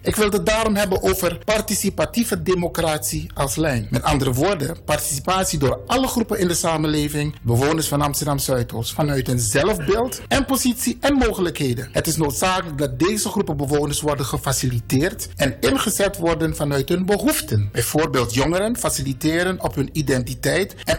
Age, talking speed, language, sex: 60-79, 150 wpm, Dutch, male